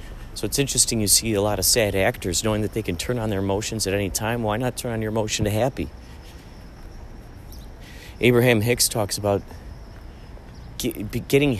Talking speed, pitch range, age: 175 wpm, 95-125 Hz, 40-59